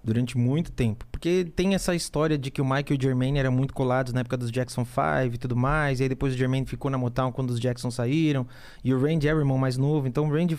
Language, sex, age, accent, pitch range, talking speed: Portuguese, male, 20-39, Brazilian, 125-160 Hz, 270 wpm